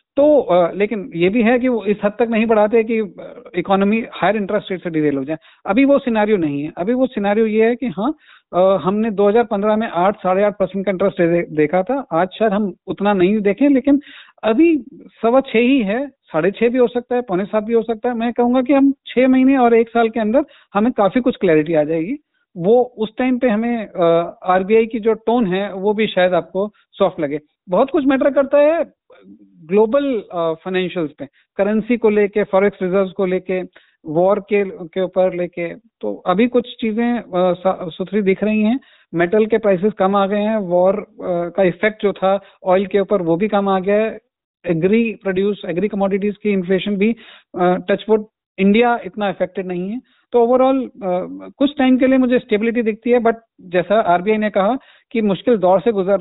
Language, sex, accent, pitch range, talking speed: Hindi, male, native, 185-235 Hz, 200 wpm